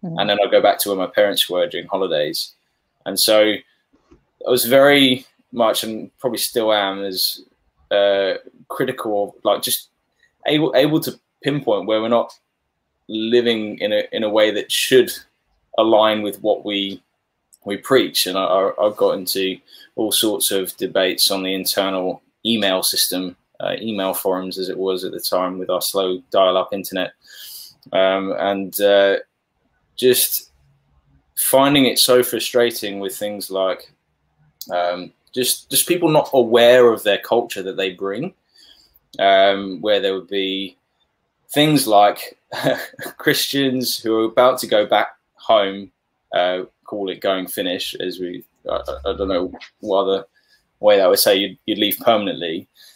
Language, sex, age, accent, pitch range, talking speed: English, male, 10-29, British, 95-125 Hz, 155 wpm